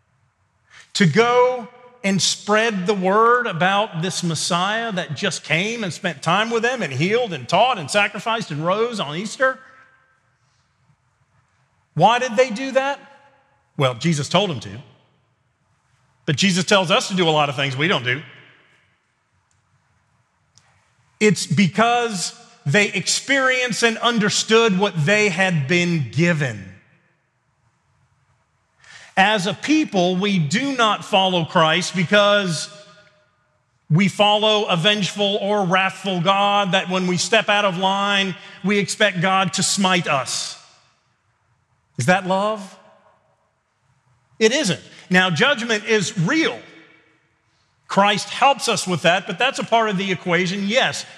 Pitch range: 155-210 Hz